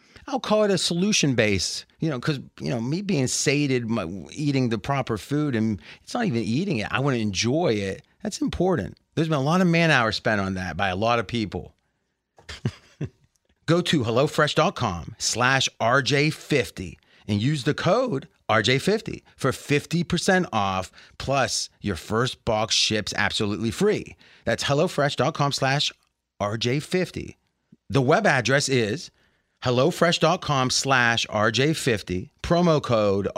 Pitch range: 110-150 Hz